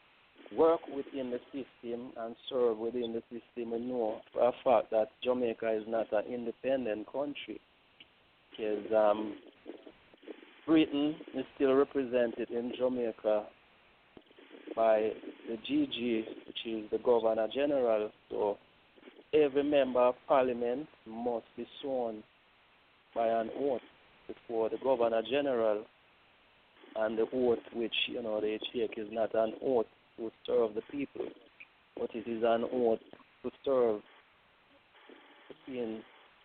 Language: English